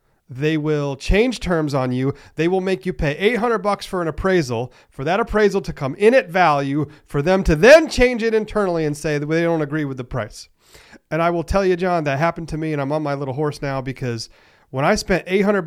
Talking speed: 235 wpm